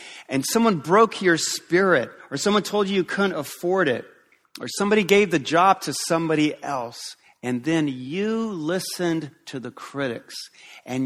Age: 40-59